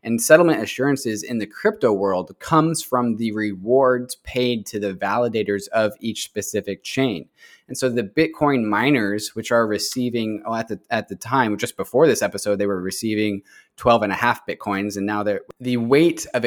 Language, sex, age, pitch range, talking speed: English, male, 20-39, 100-120 Hz, 185 wpm